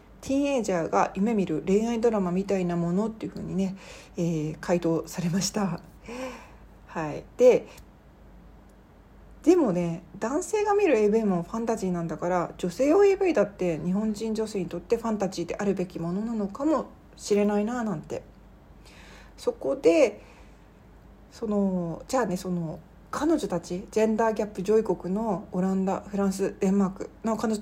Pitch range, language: 180-245 Hz, Japanese